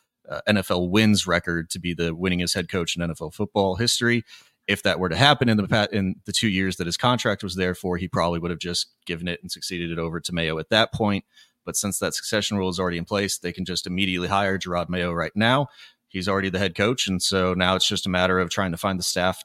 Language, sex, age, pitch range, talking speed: English, male, 30-49, 90-105 Hz, 255 wpm